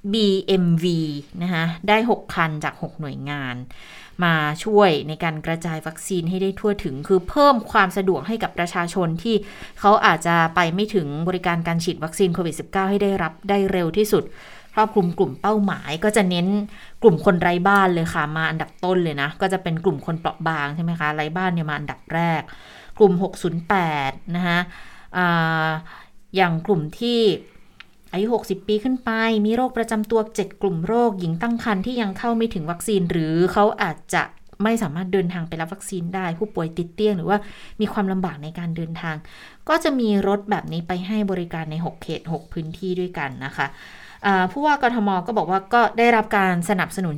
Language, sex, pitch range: Thai, female, 165-205 Hz